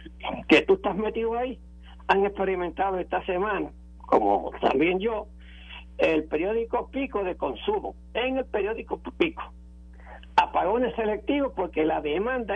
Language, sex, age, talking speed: Spanish, male, 60-79, 125 wpm